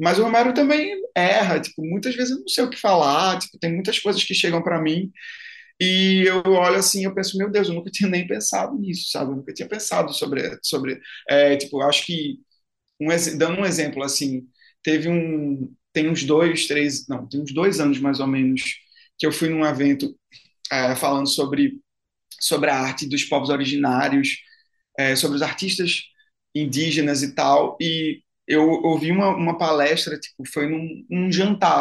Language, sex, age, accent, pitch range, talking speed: Portuguese, male, 20-39, Brazilian, 140-180 Hz, 185 wpm